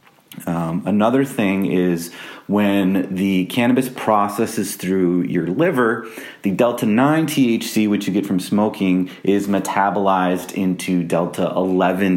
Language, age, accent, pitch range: English, 30-49, American, 90-110 Hz